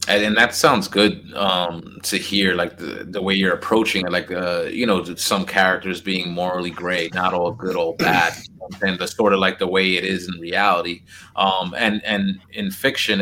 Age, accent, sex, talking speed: 30-49, American, male, 215 wpm